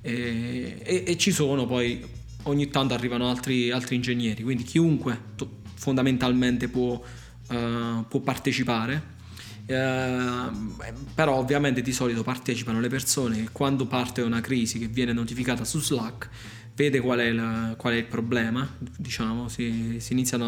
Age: 20-39